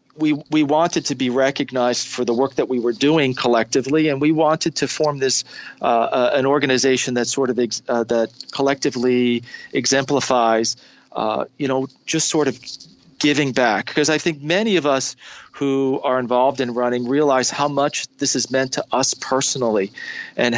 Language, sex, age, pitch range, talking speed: English, male, 40-59, 120-145 Hz, 180 wpm